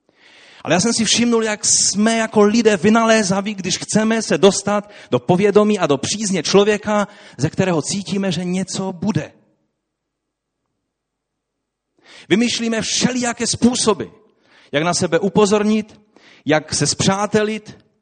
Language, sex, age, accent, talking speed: Czech, male, 30-49, native, 120 wpm